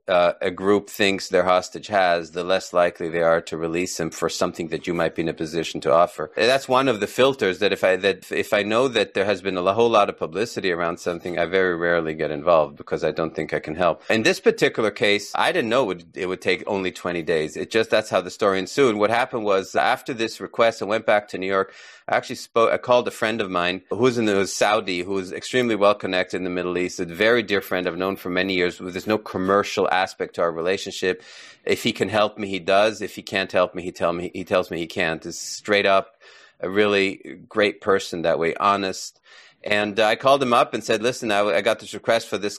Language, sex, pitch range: English, male, 90-110 Hz